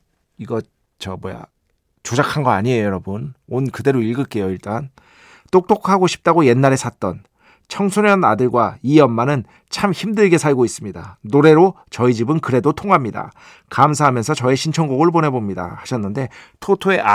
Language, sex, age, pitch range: Korean, male, 40-59, 110-155 Hz